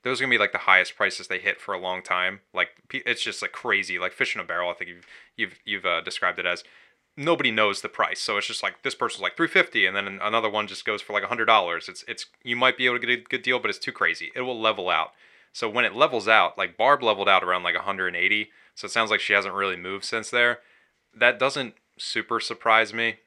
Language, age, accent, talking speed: English, 20-39, American, 270 wpm